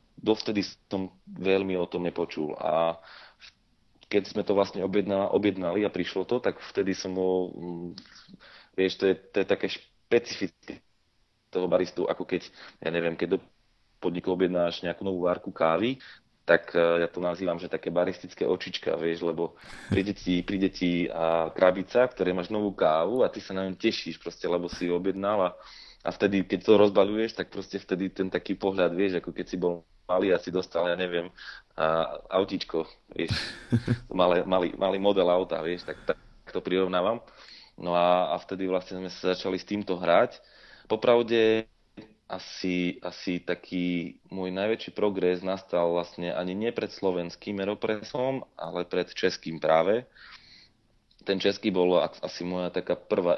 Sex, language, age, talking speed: male, Slovak, 30-49, 155 wpm